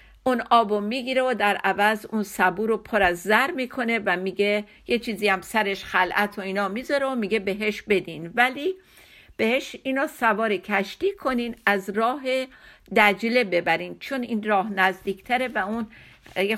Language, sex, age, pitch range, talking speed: Persian, female, 50-69, 190-240 Hz, 160 wpm